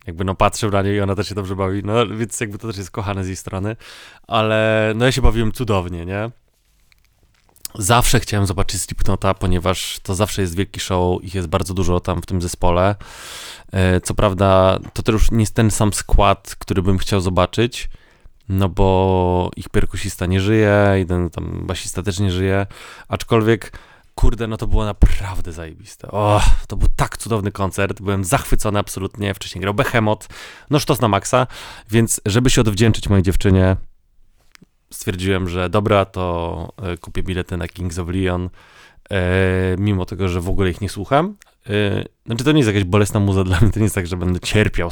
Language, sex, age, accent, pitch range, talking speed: Polish, male, 20-39, native, 95-110 Hz, 180 wpm